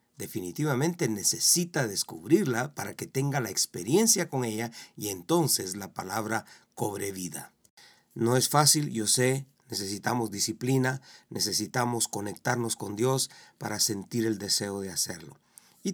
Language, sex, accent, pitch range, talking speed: Spanish, male, Mexican, 110-130 Hz, 130 wpm